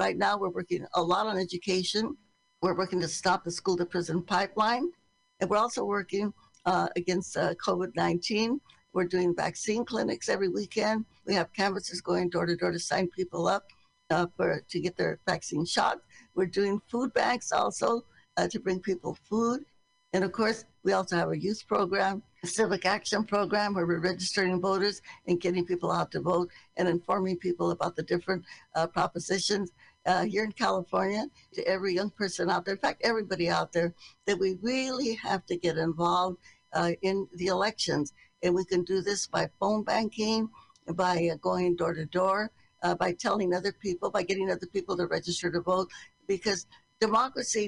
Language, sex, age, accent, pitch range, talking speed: English, female, 60-79, American, 175-205 Hz, 180 wpm